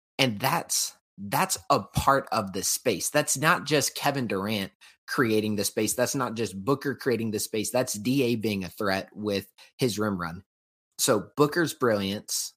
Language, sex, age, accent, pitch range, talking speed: English, male, 30-49, American, 100-140 Hz, 165 wpm